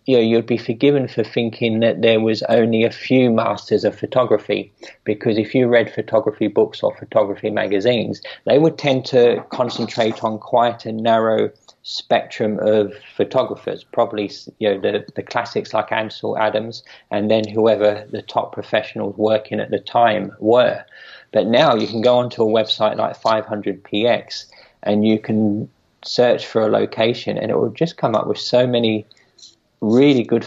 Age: 20-39